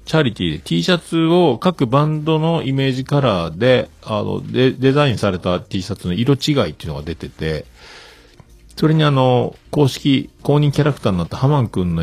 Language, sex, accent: Japanese, male, native